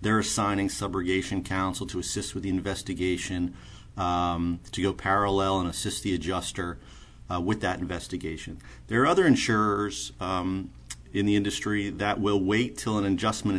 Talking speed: 155 wpm